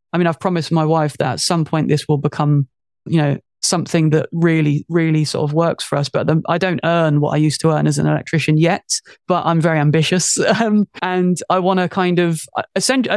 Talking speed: 230 wpm